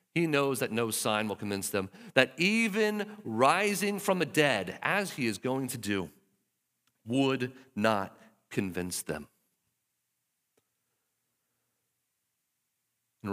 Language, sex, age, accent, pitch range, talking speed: English, male, 40-59, American, 105-160 Hz, 115 wpm